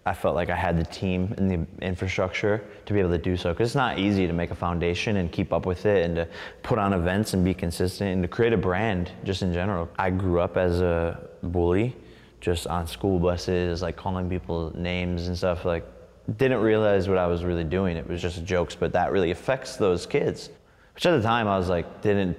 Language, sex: English, male